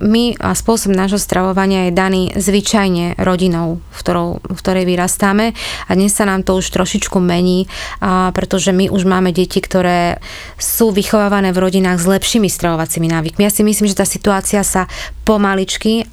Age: 20-39